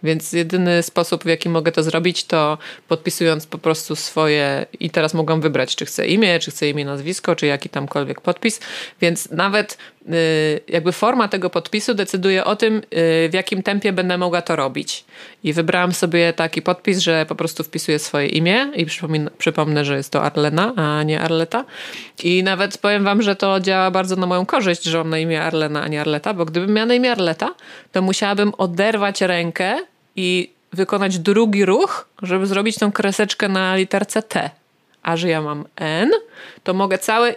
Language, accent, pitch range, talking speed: Polish, native, 165-200 Hz, 180 wpm